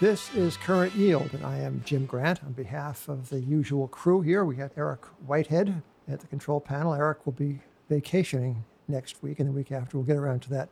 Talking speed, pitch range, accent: 220 wpm, 135-155 Hz, American